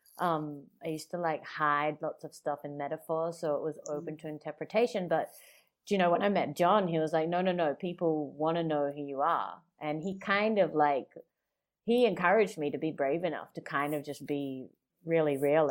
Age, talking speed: 30-49, 220 wpm